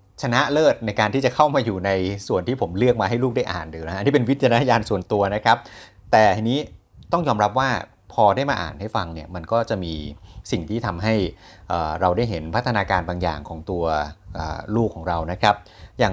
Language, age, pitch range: Thai, 30-49, 95-120 Hz